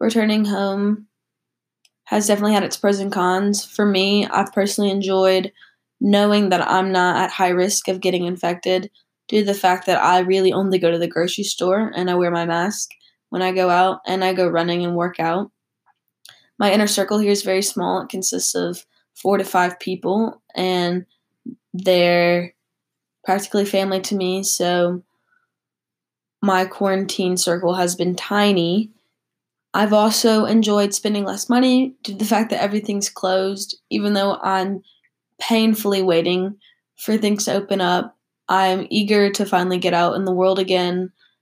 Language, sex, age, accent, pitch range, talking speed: English, female, 10-29, American, 180-200 Hz, 165 wpm